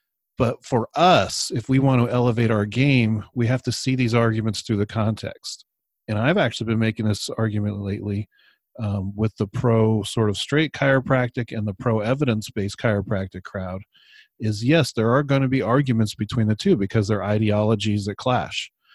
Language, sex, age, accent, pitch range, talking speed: English, male, 40-59, American, 105-125 Hz, 180 wpm